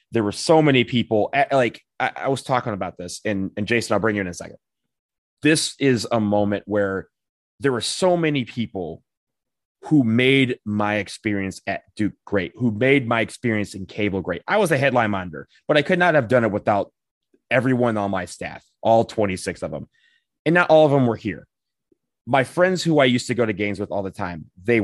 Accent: American